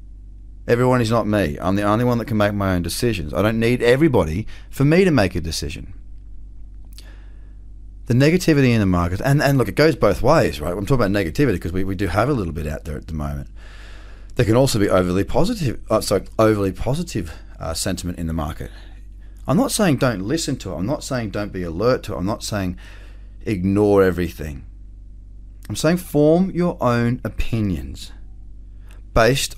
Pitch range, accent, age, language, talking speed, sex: 95-125 Hz, Australian, 30-49, English, 195 wpm, male